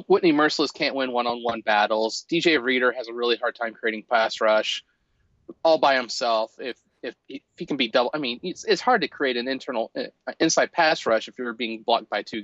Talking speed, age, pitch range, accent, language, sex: 225 wpm, 30-49, 115-155 Hz, American, English, male